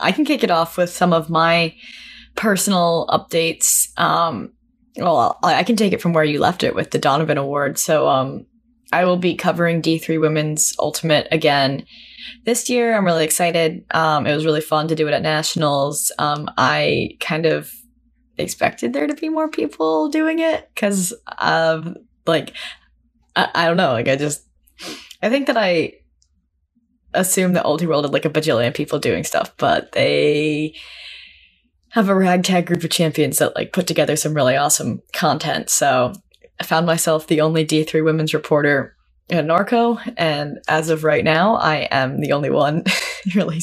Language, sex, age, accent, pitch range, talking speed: English, female, 10-29, American, 155-195 Hz, 175 wpm